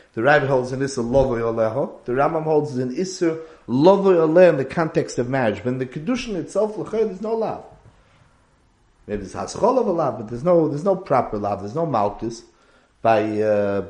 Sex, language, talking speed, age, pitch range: male, English, 195 wpm, 40-59, 125-175 Hz